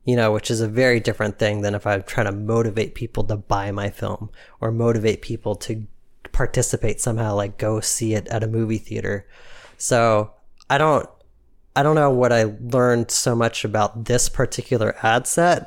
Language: English